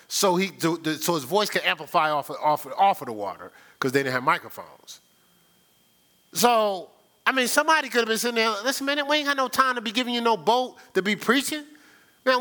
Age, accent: 30-49, American